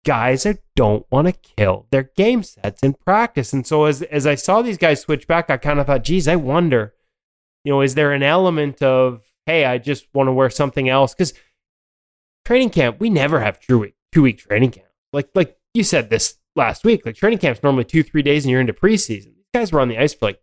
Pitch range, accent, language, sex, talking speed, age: 130-165 Hz, American, English, male, 235 wpm, 20-39